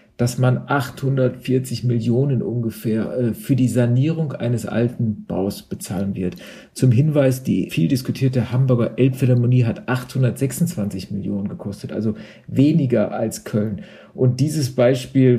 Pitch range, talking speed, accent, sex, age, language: 120-135 Hz, 125 wpm, German, male, 50-69, German